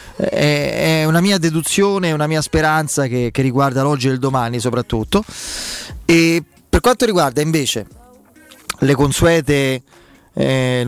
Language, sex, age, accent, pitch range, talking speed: Italian, male, 30-49, native, 130-160 Hz, 125 wpm